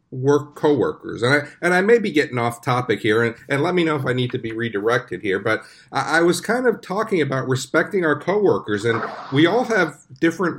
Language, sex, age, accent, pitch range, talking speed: English, male, 50-69, American, 120-160 Hz, 225 wpm